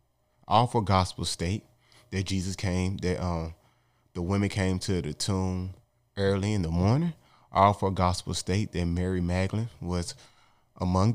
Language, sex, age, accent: English, male, 20-39, American